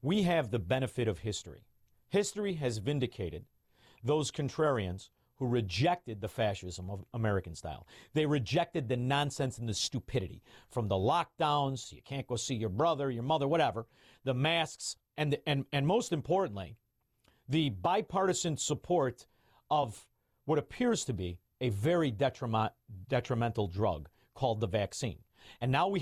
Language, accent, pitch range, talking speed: English, American, 115-155 Hz, 150 wpm